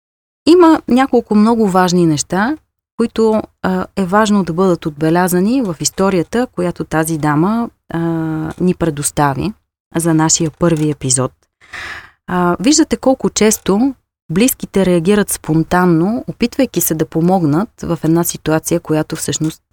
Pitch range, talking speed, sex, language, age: 160-215 Hz, 115 wpm, female, Bulgarian, 30-49